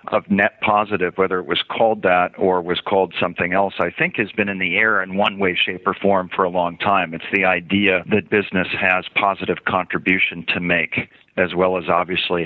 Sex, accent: male, American